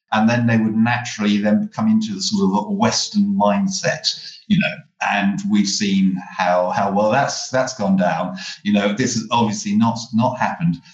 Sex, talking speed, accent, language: male, 180 wpm, British, English